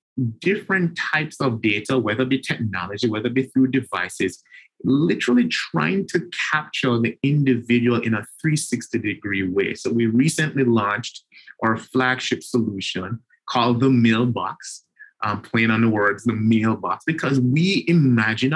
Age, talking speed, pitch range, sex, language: 30-49, 140 wpm, 115-145 Hz, male, English